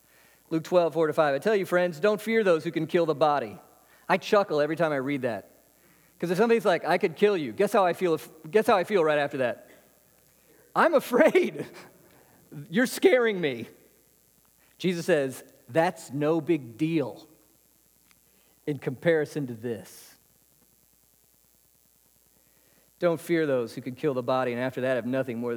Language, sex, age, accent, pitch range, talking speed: English, male, 40-59, American, 130-170 Hz, 170 wpm